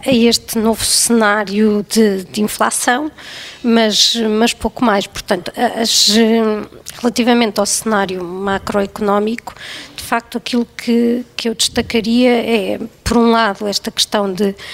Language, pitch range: Portuguese, 205-235 Hz